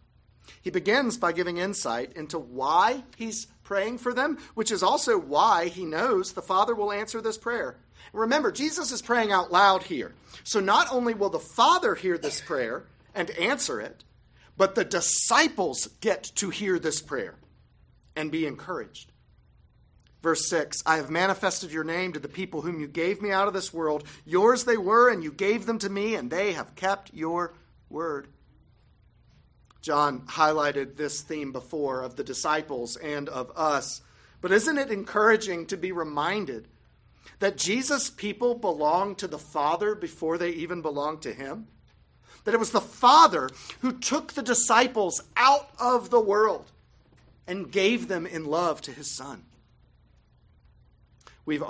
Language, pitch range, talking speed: English, 150-225 Hz, 160 wpm